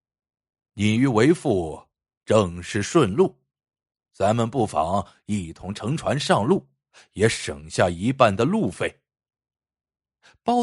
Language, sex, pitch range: Chinese, male, 110-180 Hz